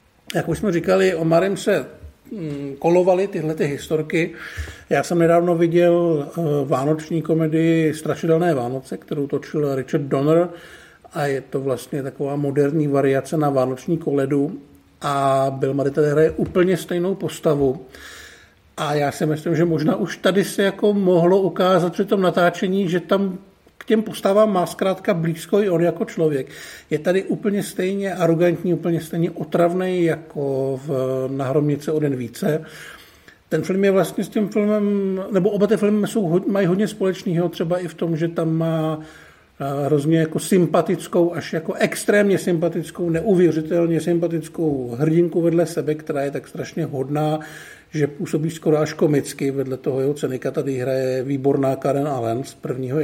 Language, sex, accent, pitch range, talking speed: Czech, male, native, 145-180 Hz, 155 wpm